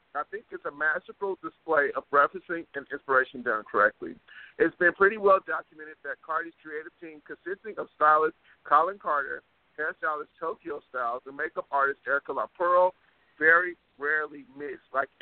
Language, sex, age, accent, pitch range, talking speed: English, male, 50-69, American, 140-175 Hz, 150 wpm